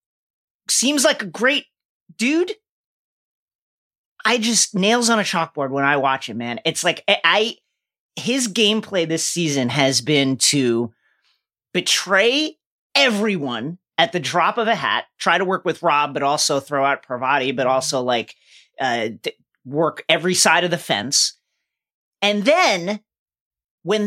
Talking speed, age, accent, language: 145 wpm, 30-49, American, English